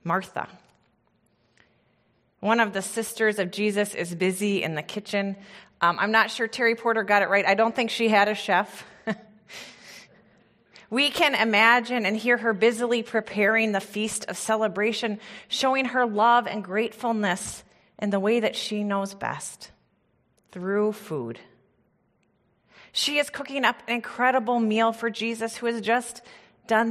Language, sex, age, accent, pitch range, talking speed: English, female, 30-49, American, 195-230 Hz, 150 wpm